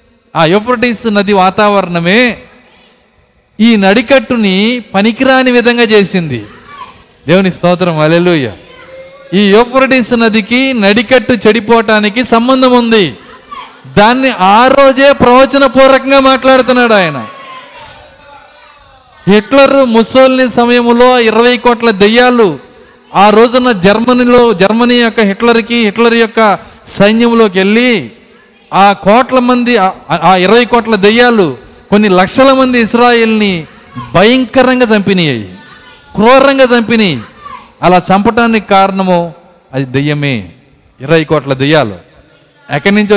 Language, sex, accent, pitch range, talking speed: Telugu, male, native, 185-245 Hz, 95 wpm